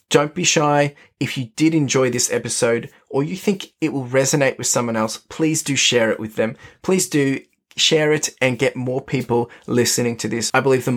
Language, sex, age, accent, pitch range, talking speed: English, male, 20-39, Australian, 115-145 Hz, 210 wpm